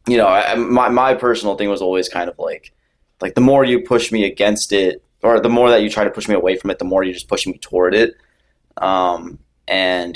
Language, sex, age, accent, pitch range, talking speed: English, male, 20-39, American, 90-110 Hz, 250 wpm